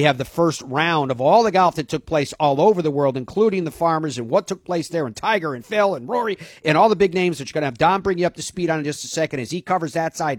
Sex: male